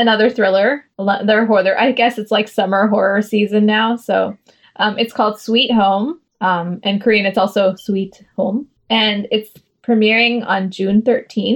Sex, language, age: female, English, 20-39